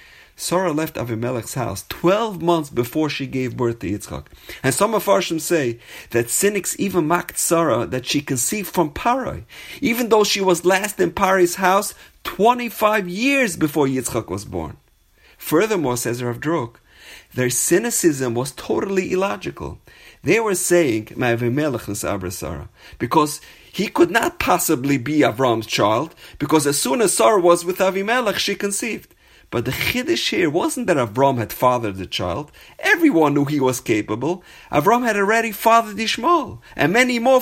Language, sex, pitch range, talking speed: English, male, 130-200 Hz, 155 wpm